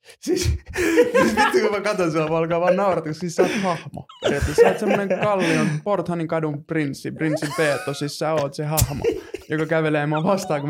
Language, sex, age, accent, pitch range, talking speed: Finnish, male, 20-39, native, 145-160 Hz, 185 wpm